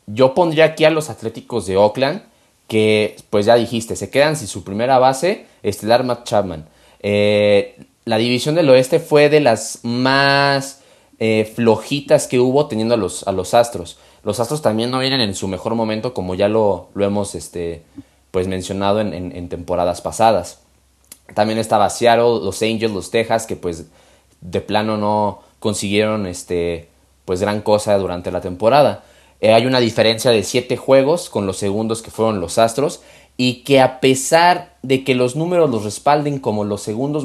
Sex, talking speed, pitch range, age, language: male, 170 wpm, 105-135 Hz, 20-39, Spanish